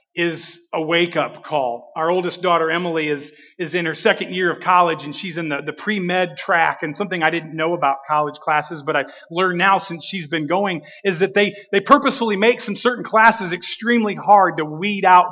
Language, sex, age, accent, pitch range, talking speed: English, male, 40-59, American, 165-205 Hz, 210 wpm